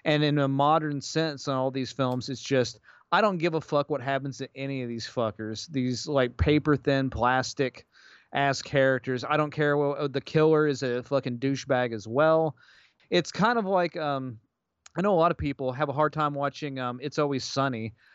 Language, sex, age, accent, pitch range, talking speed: English, male, 30-49, American, 125-150 Hz, 205 wpm